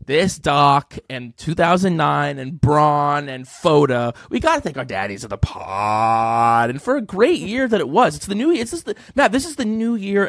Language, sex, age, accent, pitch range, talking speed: English, male, 30-49, American, 130-200 Hz, 205 wpm